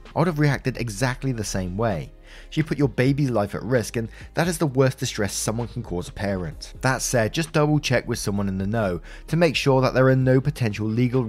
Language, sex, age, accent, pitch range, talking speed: English, male, 20-39, British, 100-135 Hz, 240 wpm